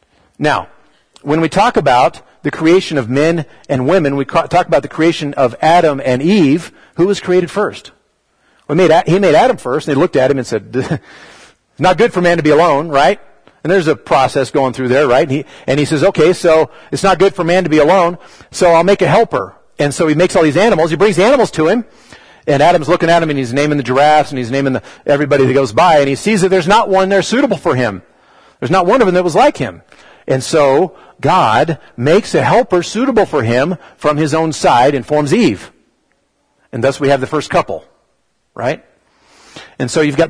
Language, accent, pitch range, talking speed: English, American, 135-180 Hz, 220 wpm